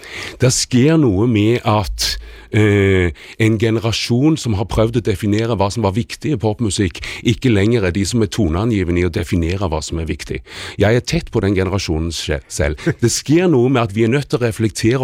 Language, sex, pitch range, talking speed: Danish, male, 110-145 Hz, 205 wpm